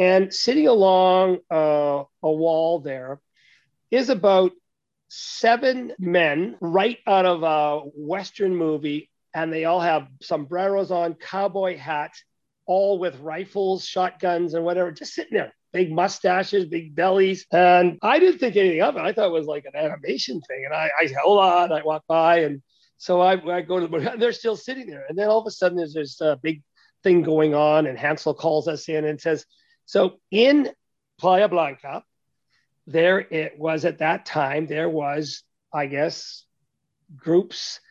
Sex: male